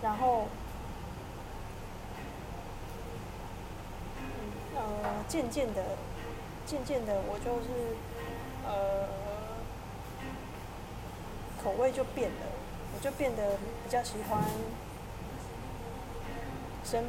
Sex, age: female, 20-39